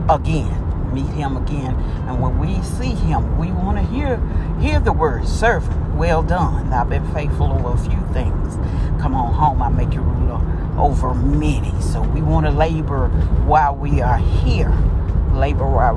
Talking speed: 175 wpm